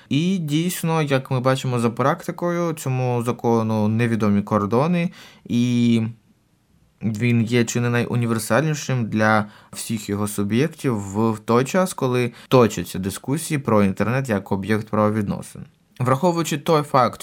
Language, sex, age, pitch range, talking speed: Ukrainian, male, 20-39, 105-135 Hz, 120 wpm